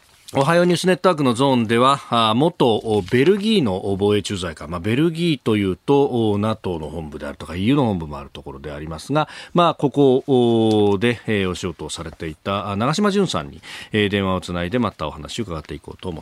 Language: Japanese